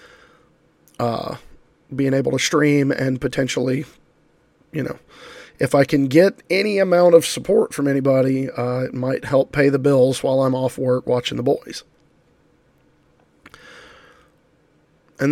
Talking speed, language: 135 wpm, English